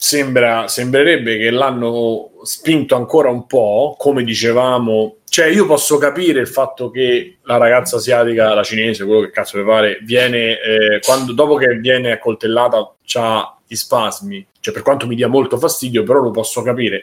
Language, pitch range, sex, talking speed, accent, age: Italian, 115-140 Hz, male, 170 wpm, native, 30-49